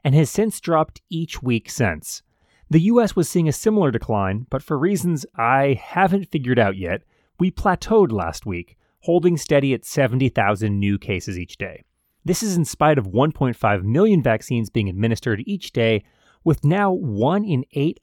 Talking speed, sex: 170 wpm, male